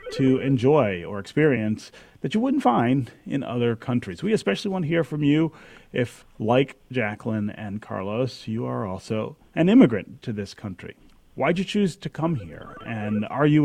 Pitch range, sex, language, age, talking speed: 110-145 Hz, male, English, 30-49, 175 wpm